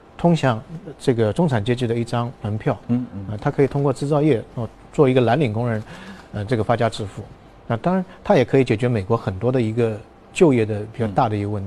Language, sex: Chinese, male